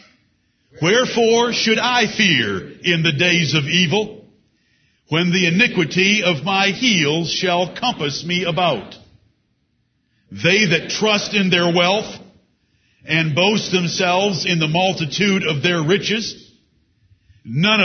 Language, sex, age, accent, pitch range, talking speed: English, male, 50-69, American, 155-195 Hz, 120 wpm